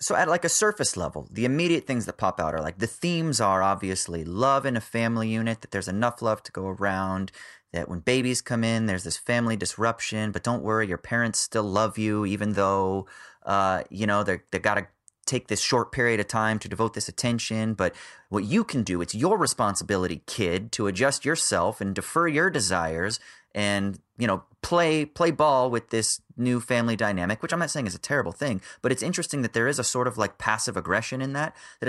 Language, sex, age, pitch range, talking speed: English, male, 30-49, 100-130 Hz, 220 wpm